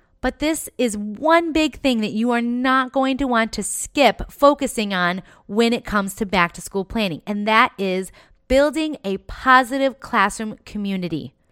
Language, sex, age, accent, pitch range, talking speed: English, female, 30-49, American, 215-275 Hz, 170 wpm